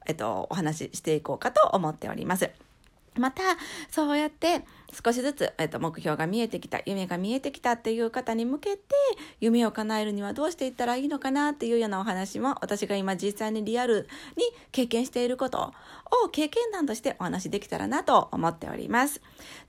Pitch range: 210-290 Hz